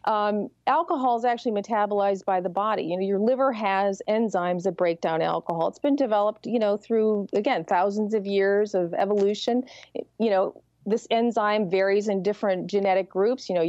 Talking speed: 180 wpm